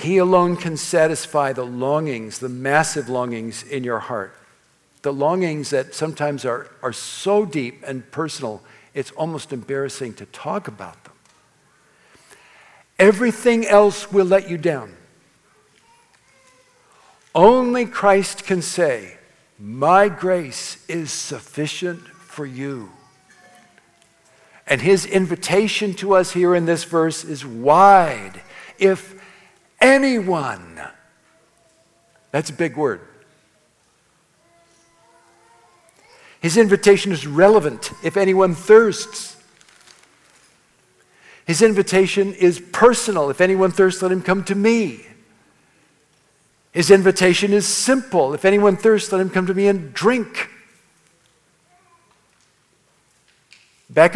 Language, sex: English, male